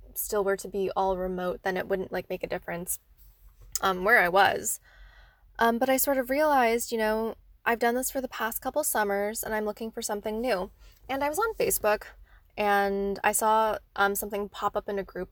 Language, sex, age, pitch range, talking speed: English, female, 10-29, 200-255 Hz, 210 wpm